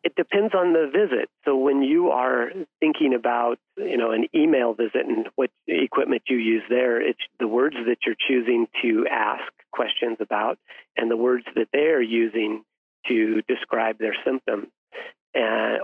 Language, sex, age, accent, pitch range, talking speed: English, male, 40-59, American, 115-160 Hz, 165 wpm